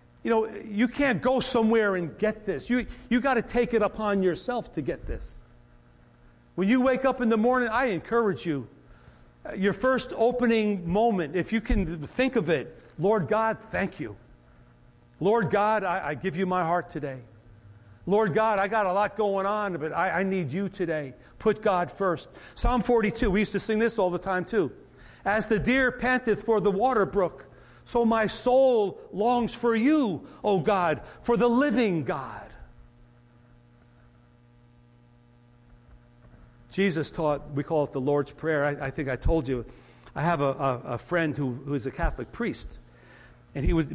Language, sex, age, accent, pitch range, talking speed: English, male, 50-69, American, 135-215 Hz, 175 wpm